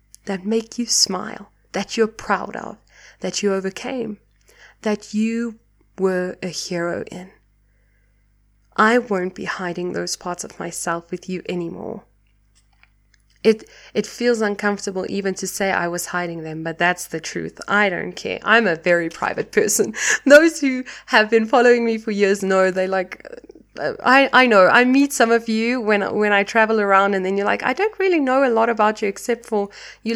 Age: 20-39